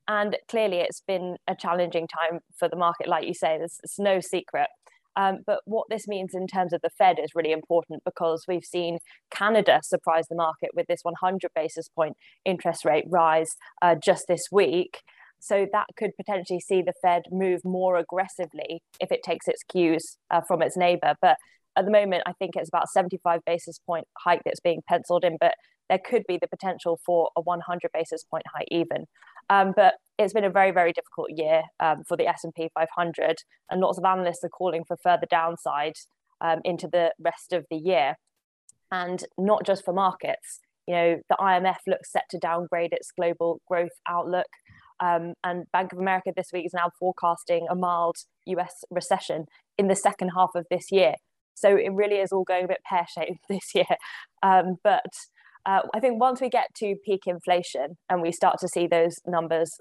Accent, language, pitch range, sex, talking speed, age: British, English, 170-190 Hz, female, 195 wpm, 20-39